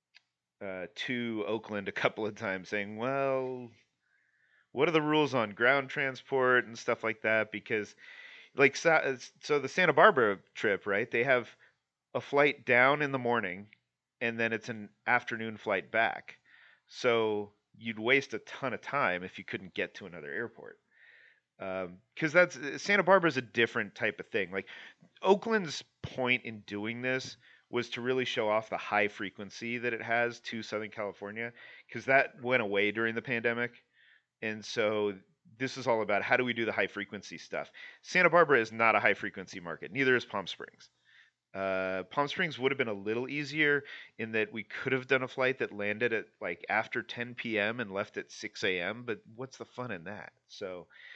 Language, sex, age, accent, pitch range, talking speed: English, male, 40-59, American, 105-130 Hz, 185 wpm